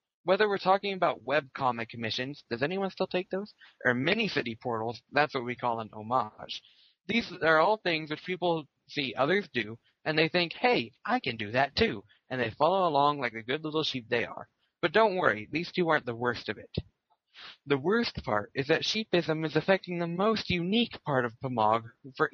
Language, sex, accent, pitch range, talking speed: English, male, American, 120-175 Hz, 200 wpm